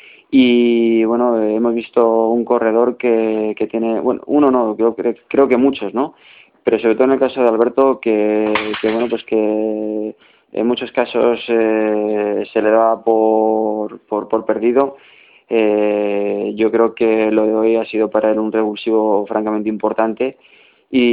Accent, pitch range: Spanish, 110-120 Hz